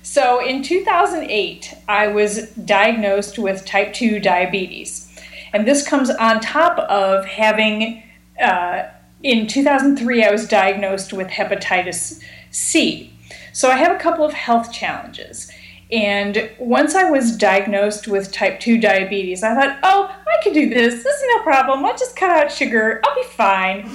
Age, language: 40-59, English